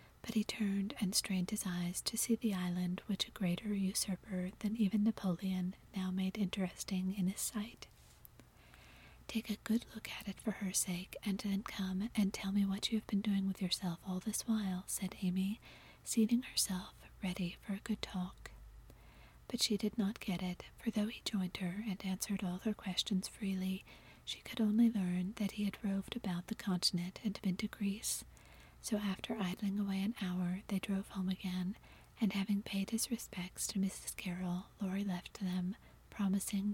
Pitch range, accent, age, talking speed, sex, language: 185-210 Hz, American, 40-59, 185 wpm, female, English